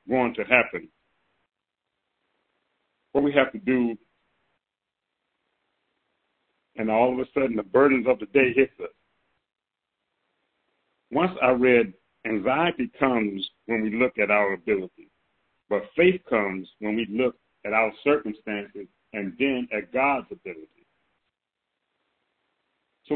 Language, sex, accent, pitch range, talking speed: English, male, American, 110-140 Hz, 120 wpm